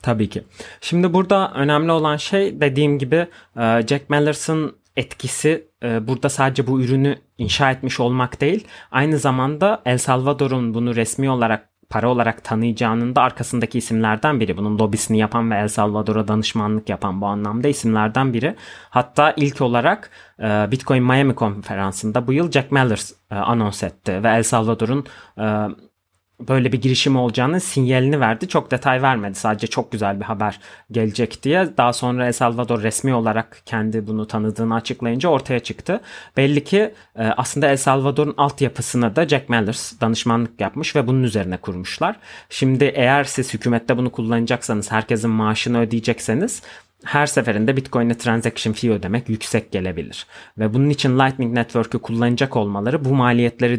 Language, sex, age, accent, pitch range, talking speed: Turkish, male, 30-49, native, 110-135 Hz, 145 wpm